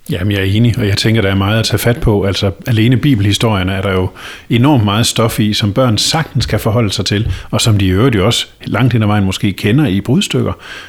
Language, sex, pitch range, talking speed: Danish, male, 100-125 Hz, 255 wpm